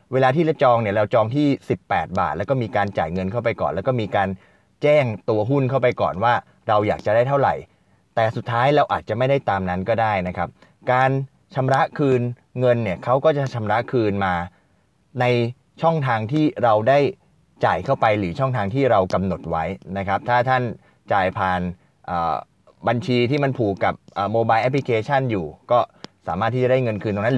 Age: 20-39